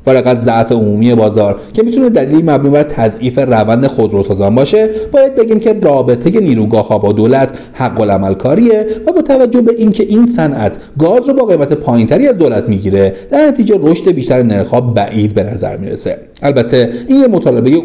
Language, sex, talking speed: Persian, male, 170 wpm